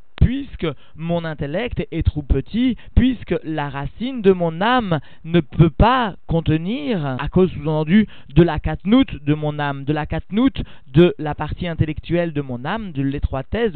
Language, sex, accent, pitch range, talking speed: French, male, French, 140-185 Hz, 165 wpm